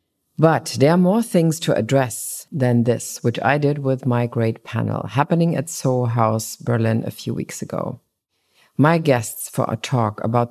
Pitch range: 115-145 Hz